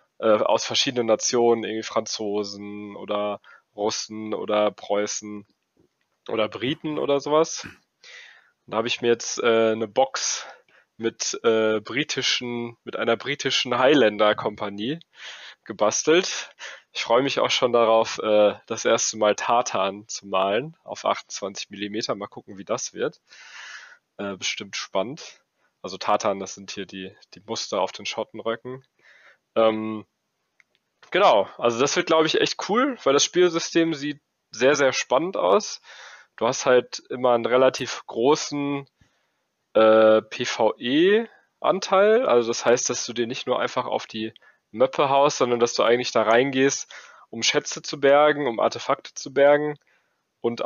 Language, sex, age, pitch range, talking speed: German, male, 20-39, 105-140 Hz, 140 wpm